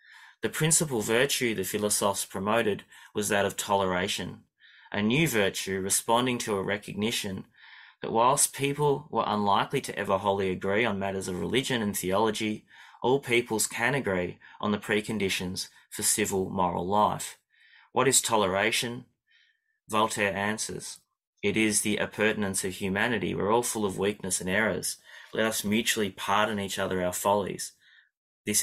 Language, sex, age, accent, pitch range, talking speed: English, male, 20-39, Australian, 95-115 Hz, 145 wpm